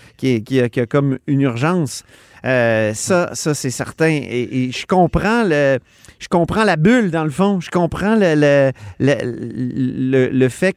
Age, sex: 40-59, male